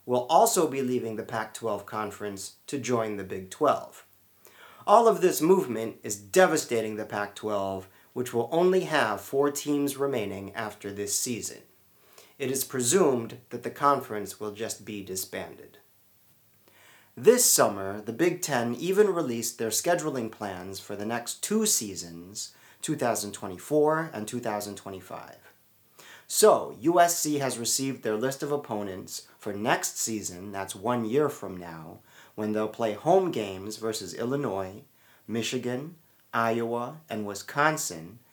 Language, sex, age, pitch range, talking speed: English, male, 40-59, 100-140 Hz, 135 wpm